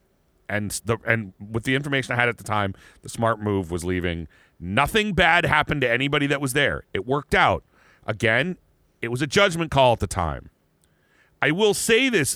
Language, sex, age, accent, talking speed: English, male, 40-59, American, 195 wpm